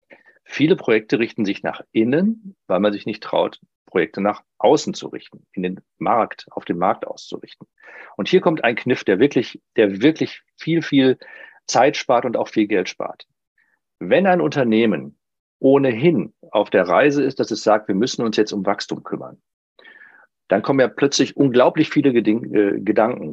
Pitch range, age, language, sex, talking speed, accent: 105-165 Hz, 40-59, German, male, 170 wpm, German